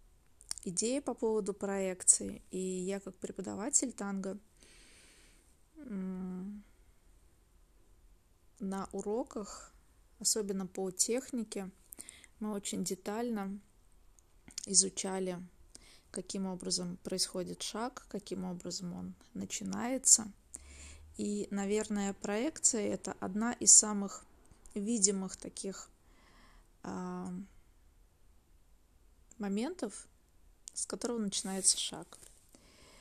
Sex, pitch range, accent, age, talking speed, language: female, 180-220 Hz, native, 20-39, 75 wpm, Russian